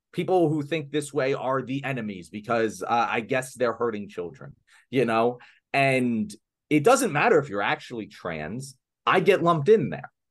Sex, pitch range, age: male, 115-160 Hz, 30-49